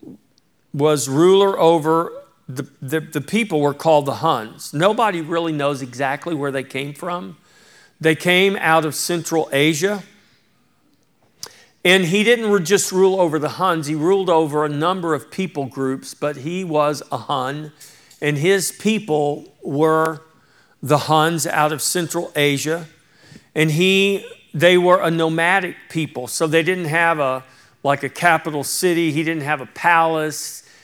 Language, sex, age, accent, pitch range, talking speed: English, male, 50-69, American, 145-180 Hz, 150 wpm